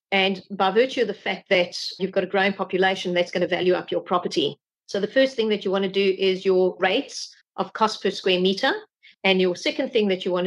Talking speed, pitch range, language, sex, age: 245 wpm, 185-215 Hz, English, female, 40-59